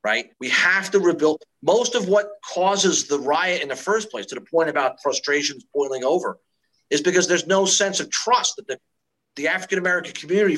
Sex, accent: male, American